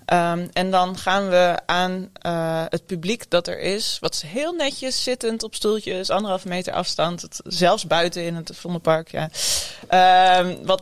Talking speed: 145 wpm